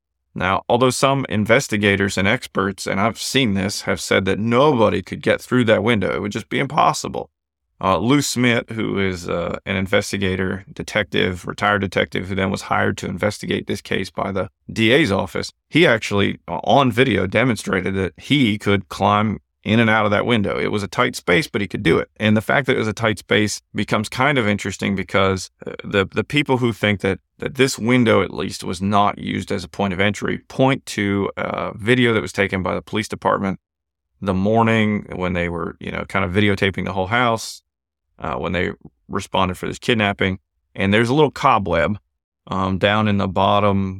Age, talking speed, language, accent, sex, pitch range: 30-49, 200 wpm, English, American, male, 95-115 Hz